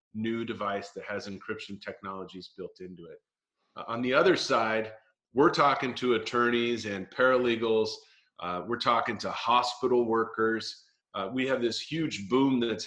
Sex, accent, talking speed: male, American, 155 wpm